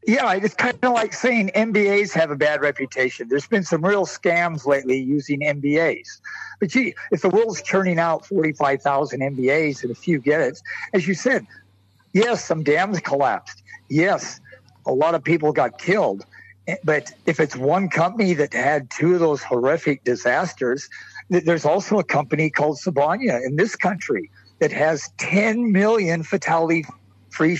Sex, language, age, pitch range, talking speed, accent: male, English, 60-79, 150-200 Hz, 155 wpm, American